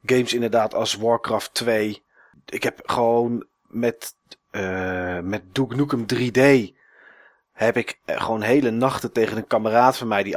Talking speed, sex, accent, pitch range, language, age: 140 wpm, male, Dutch, 105-130 Hz, Dutch, 30-49